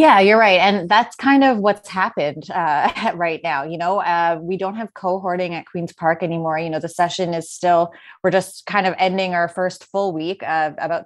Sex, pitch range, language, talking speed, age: female, 170-190 Hz, English, 215 wpm, 20-39